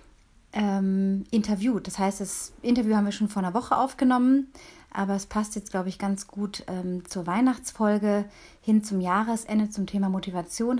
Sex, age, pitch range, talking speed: female, 30-49, 195-225 Hz, 155 wpm